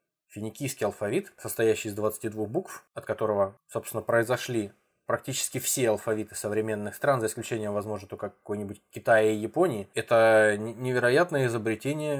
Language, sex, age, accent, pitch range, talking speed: Russian, male, 20-39, native, 105-130 Hz, 130 wpm